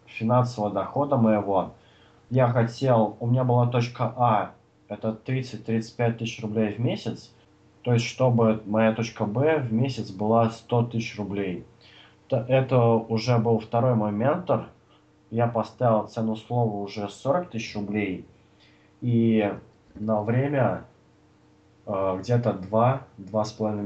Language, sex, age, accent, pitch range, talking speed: Russian, male, 20-39, native, 110-125 Hz, 115 wpm